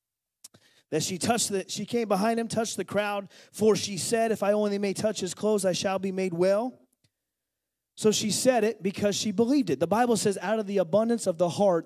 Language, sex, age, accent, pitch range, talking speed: English, male, 30-49, American, 190-230 Hz, 225 wpm